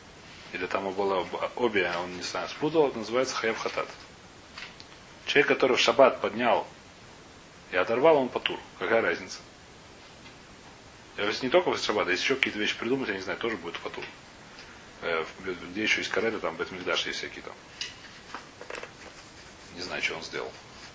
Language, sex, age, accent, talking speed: Russian, male, 30-49, native, 160 wpm